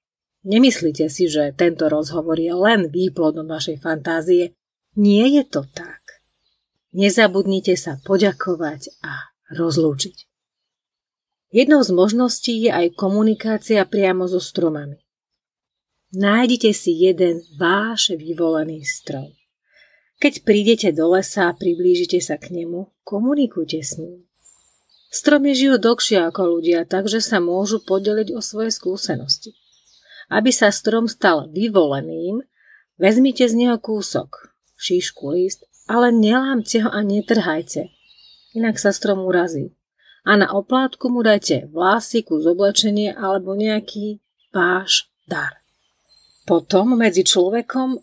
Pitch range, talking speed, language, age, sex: 170-220 Hz, 115 wpm, Slovak, 30-49, female